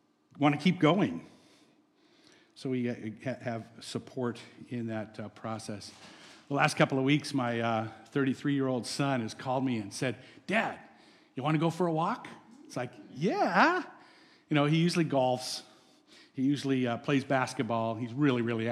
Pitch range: 125-165 Hz